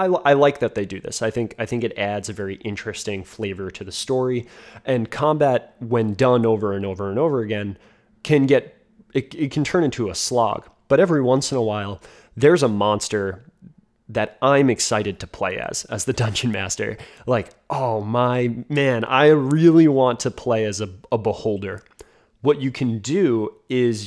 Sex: male